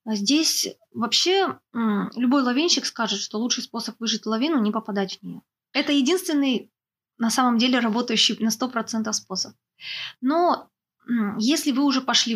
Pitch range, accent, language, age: 210-250 Hz, native, Russian, 20-39